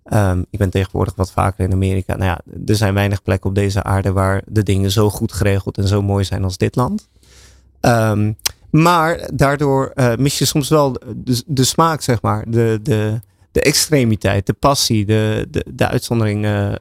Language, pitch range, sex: Dutch, 100-125 Hz, male